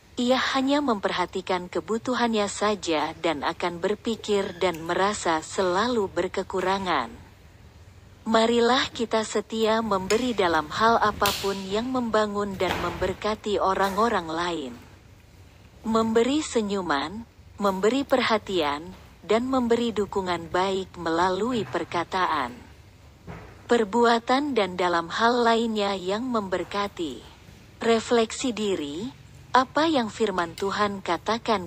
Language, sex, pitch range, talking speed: Indonesian, female, 175-230 Hz, 95 wpm